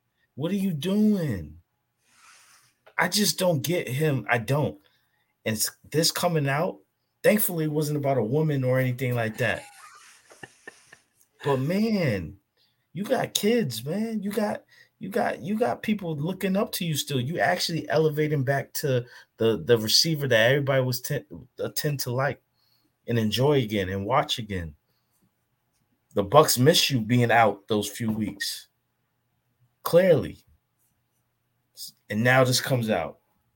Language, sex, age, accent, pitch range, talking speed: English, male, 30-49, American, 110-155 Hz, 140 wpm